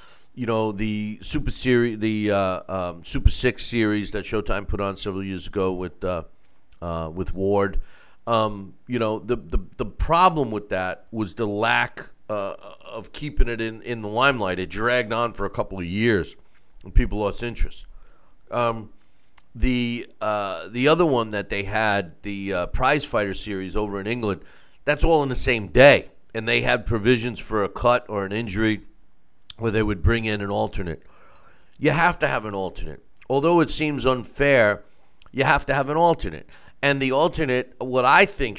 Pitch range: 100-130 Hz